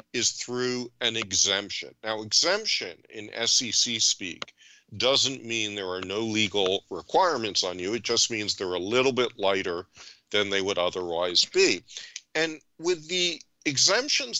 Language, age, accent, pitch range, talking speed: English, 50-69, American, 100-140 Hz, 145 wpm